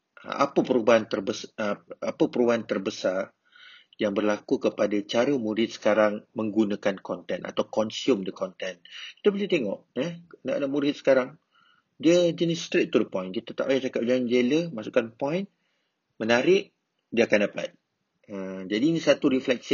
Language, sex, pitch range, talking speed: Malay, male, 105-140 Hz, 150 wpm